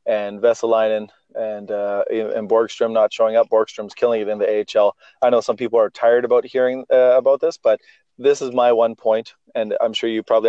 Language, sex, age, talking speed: English, male, 30-49, 210 wpm